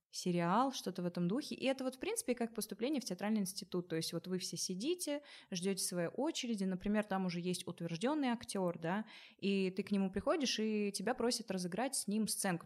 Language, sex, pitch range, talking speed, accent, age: Russian, female, 180-245 Hz, 205 wpm, native, 20-39